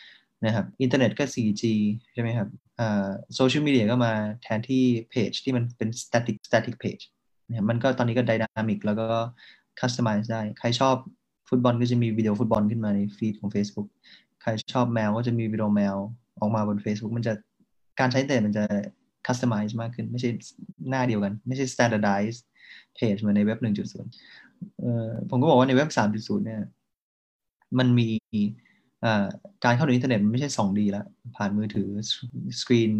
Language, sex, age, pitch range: Thai, male, 20-39, 105-125 Hz